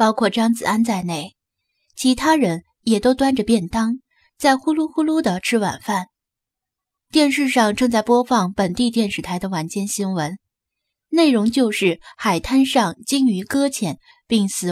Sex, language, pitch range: female, Chinese, 195-255 Hz